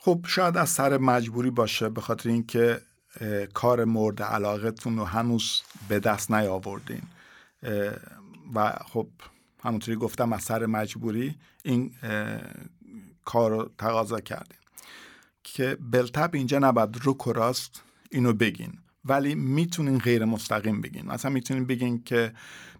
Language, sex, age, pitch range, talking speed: Swedish, male, 50-69, 110-125 Hz, 125 wpm